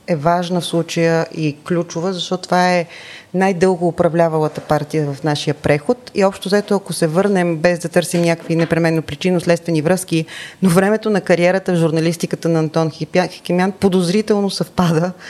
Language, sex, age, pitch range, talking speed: Bulgarian, female, 30-49, 160-200 Hz, 160 wpm